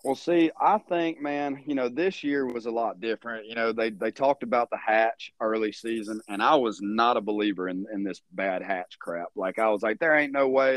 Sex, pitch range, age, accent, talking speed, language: male, 110-140 Hz, 30-49, American, 240 wpm, English